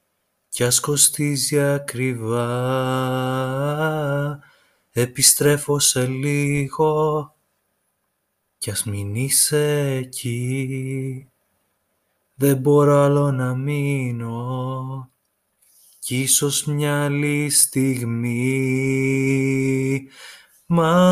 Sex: male